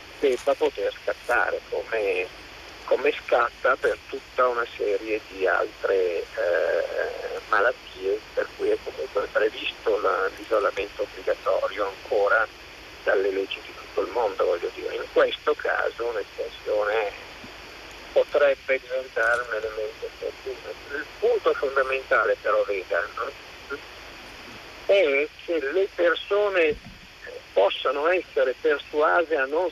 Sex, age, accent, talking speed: male, 50-69, native, 105 wpm